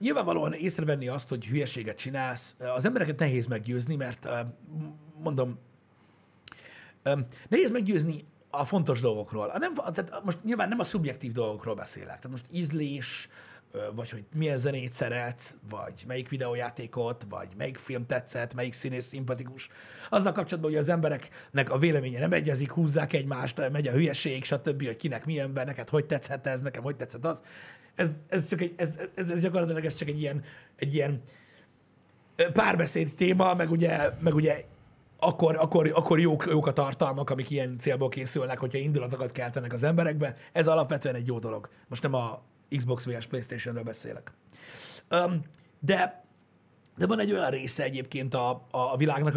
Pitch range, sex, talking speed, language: 125-160 Hz, male, 160 wpm, Hungarian